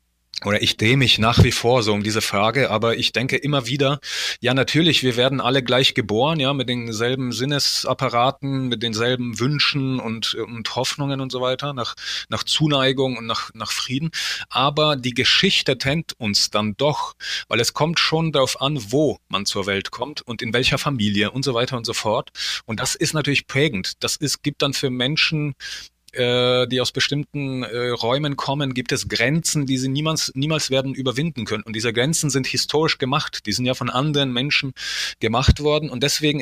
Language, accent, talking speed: German, German, 185 wpm